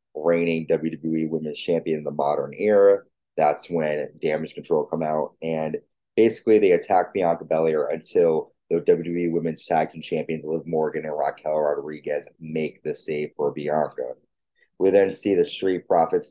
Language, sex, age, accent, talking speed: English, male, 20-39, American, 160 wpm